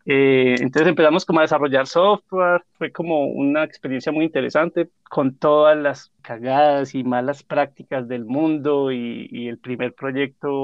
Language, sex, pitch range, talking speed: Spanish, male, 130-165 Hz, 150 wpm